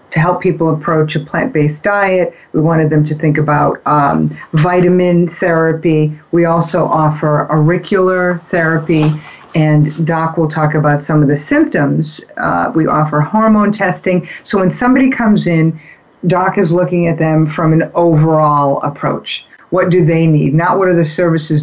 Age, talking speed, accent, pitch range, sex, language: 50-69, 160 wpm, American, 150-180 Hz, female, English